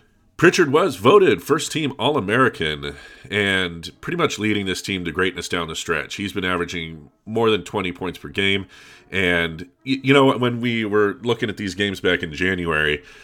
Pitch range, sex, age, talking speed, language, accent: 85-105 Hz, male, 40-59, 175 wpm, English, American